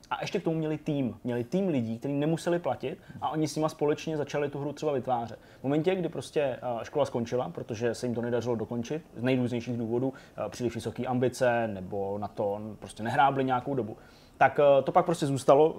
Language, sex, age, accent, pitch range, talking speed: Czech, male, 20-39, native, 125-150 Hz, 200 wpm